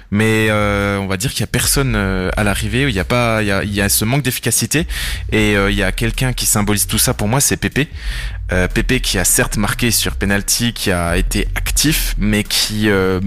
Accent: French